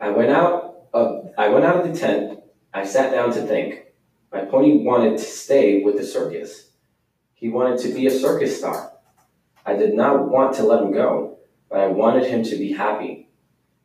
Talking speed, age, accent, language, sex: 180 wpm, 20-39, American, English, male